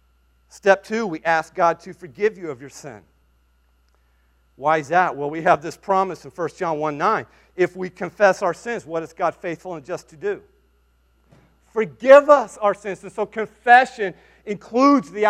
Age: 40-59